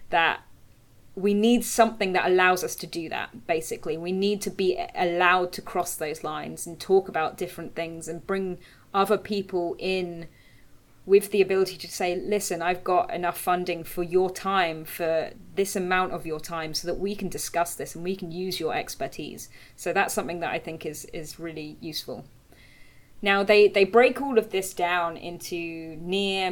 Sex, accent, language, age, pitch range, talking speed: female, British, English, 20-39, 170-200 Hz, 185 wpm